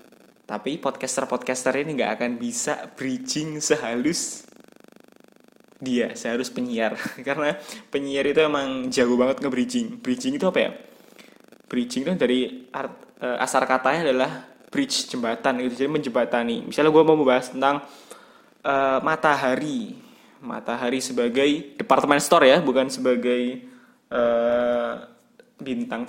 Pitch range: 130-160 Hz